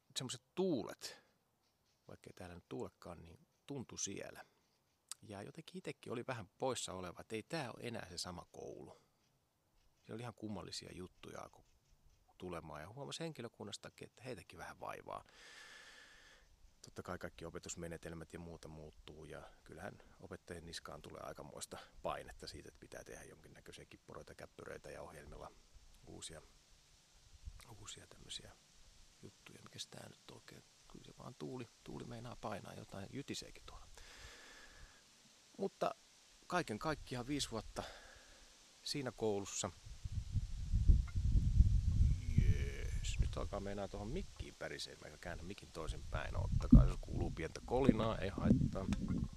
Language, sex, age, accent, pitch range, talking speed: Finnish, male, 30-49, native, 85-115 Hz, 125 wpm